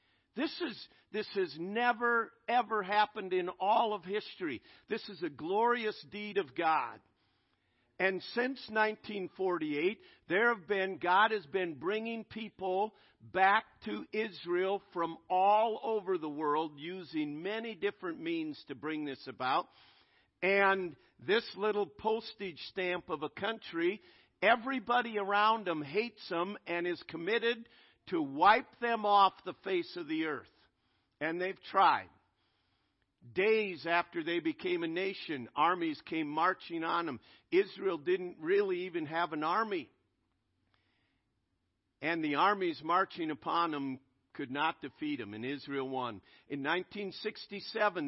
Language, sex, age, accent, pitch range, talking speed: English, male, 50-69, American, 165-235 Hz, 130 wpm